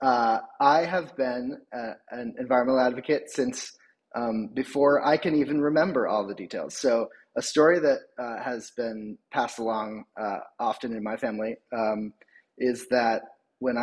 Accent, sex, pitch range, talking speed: American, male, 115-150 Hz, 155 wpm